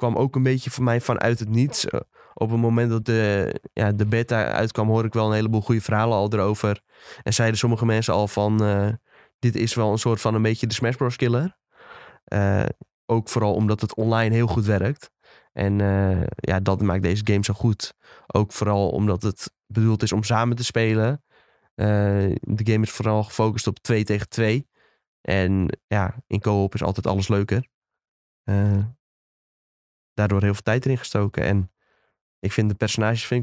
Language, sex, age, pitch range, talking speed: Dutch, male, 20-39, 105-115 Hz, 185 wpm